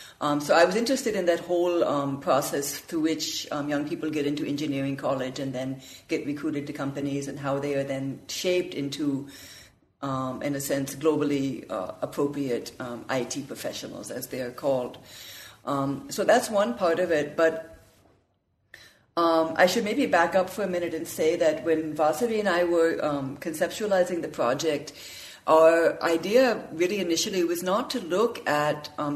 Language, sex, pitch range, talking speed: English, female, 140-170 Hz, 175 wpm